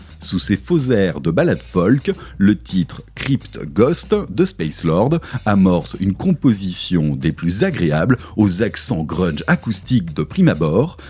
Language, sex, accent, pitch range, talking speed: French, male, French, 80-120 Hz, 140 wpm